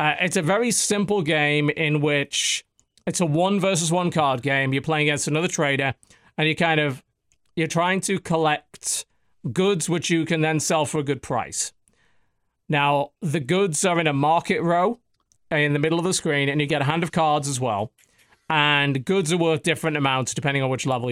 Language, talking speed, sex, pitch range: English, 200 wpm, male, 145-170 Hz